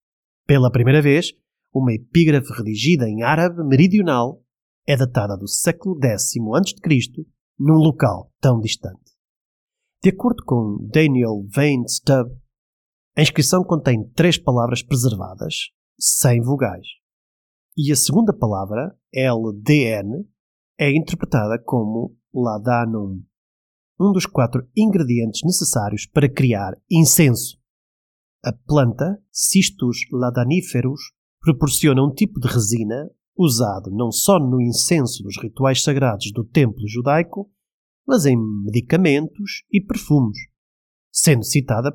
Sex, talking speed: male, 110 wpm